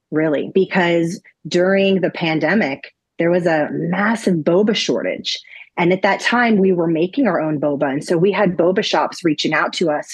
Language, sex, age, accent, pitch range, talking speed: English, female, 30-49, American, 165-205 Hz, 185 wpm